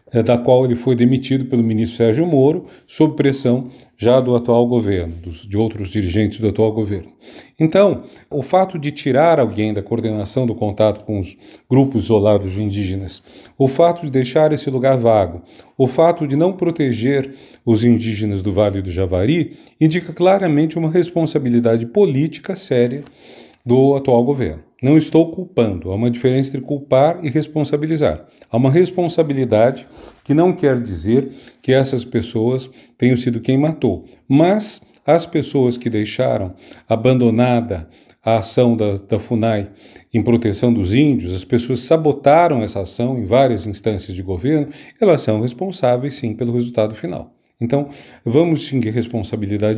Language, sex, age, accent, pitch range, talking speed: Portuguese, male, 40-59, Brazilian, 110-145 Hz, 150 wpm